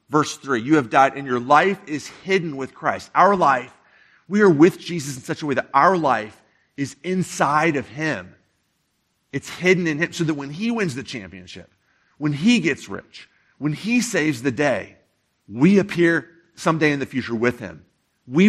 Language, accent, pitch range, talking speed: English, American, 115-160 Hz, 190 wpm